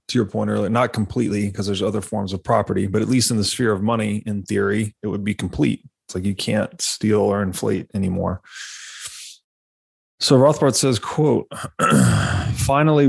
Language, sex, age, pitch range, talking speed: English, male, 20-39, 100-115 Hz, 180 wpm